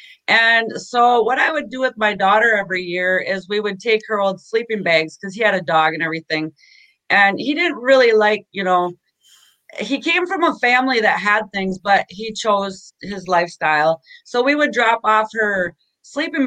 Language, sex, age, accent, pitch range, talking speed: English, female, 30-49, American, 190-240 Hz, 195 wpm